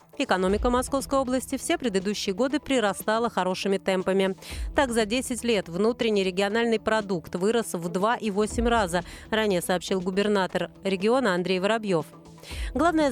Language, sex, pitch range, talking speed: Russian, female, 190-240 Hz, 125 wpm